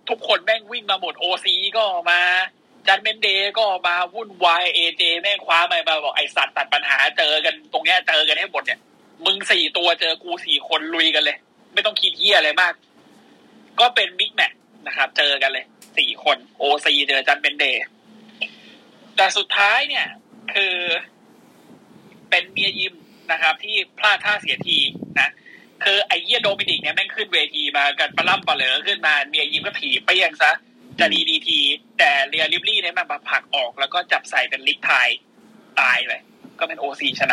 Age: 20-39